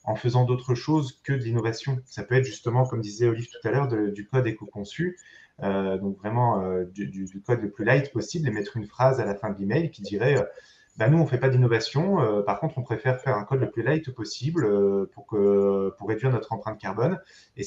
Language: French